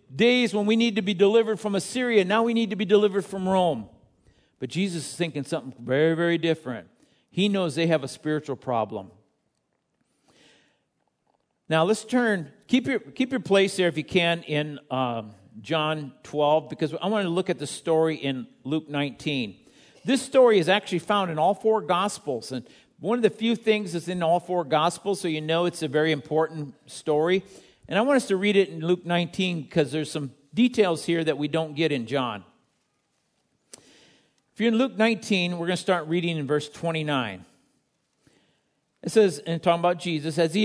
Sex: male